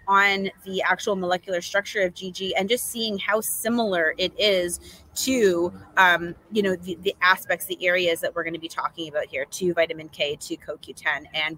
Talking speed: 190 wpm